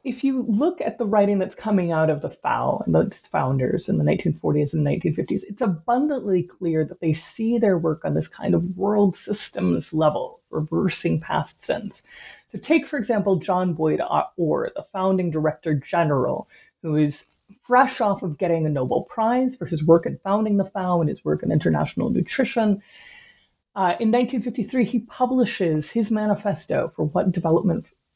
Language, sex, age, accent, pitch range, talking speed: English, female, 30-49, American, 170-235 Hz, 175 wpm